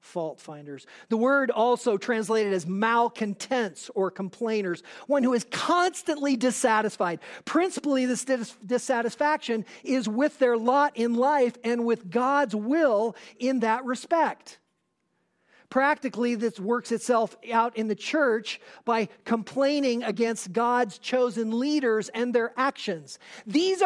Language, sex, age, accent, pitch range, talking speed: English, male, 40-59, American, 205-265 Hz, 125 wpm